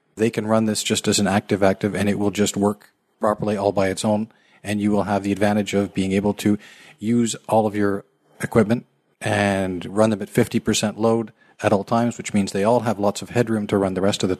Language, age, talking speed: English, 40-59, 235 wpm